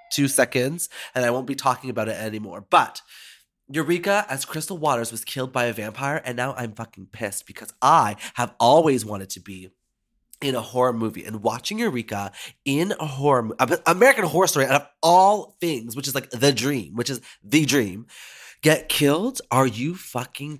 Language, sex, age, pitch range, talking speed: English, male, 20-39, 110-145 Hz, 185 wpm